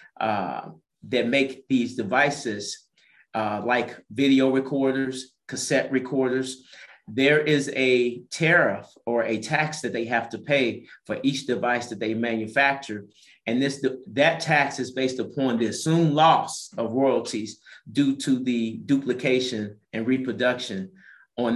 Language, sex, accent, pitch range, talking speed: English, male, American, 115-140 Hz, 135 wpm